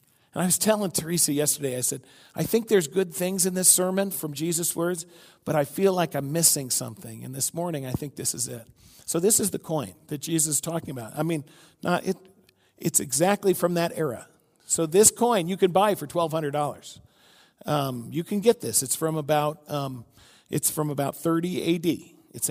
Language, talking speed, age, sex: English, 200 wpm, 50-69, male